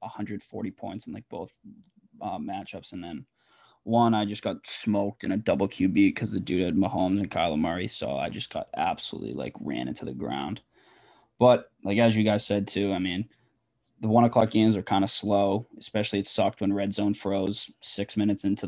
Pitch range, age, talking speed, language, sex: 100-115 Hz, 20-39, 200 wpm, English, male